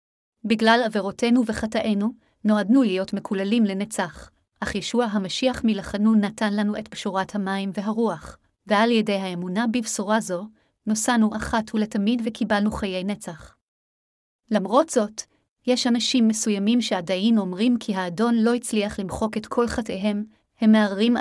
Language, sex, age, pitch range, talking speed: Hebrew, female, 30-49, 200-230 Hz, 125 wpm